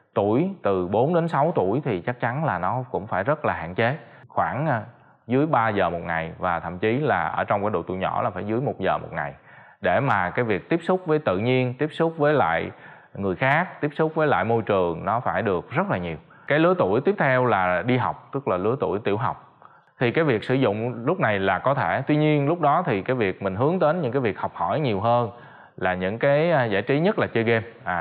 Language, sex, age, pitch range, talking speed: Vietnamese, male, 20-39, 100-150 Hz, 250 wpm